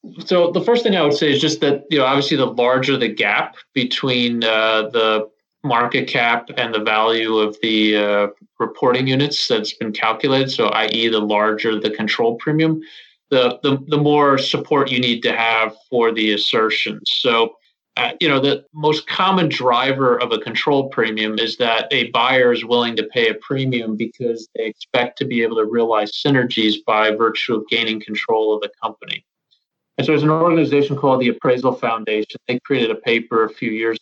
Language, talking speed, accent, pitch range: English, 190 wpm, American, 110-140 Hz